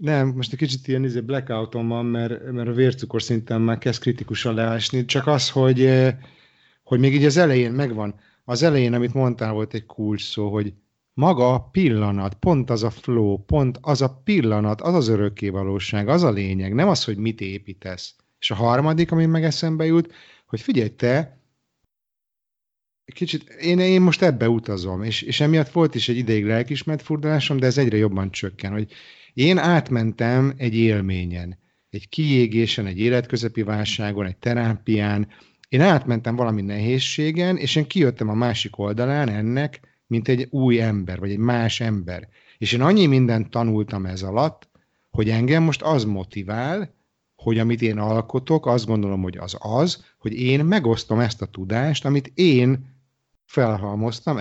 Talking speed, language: 165 wpm, Hungarian